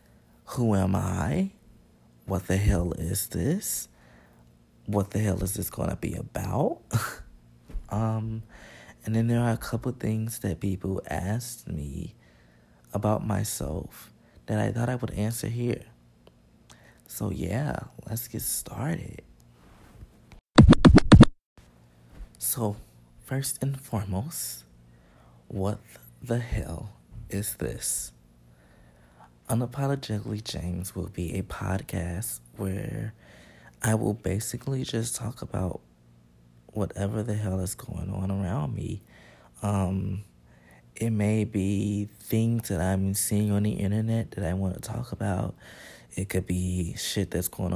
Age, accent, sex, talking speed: 20-39, American, male, 120 wpm